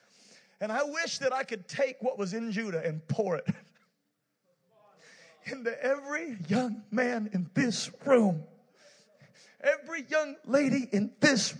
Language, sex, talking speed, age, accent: English, male, 135 wpm, 40-59, American